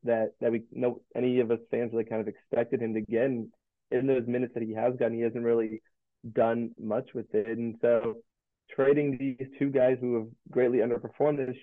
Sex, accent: male, American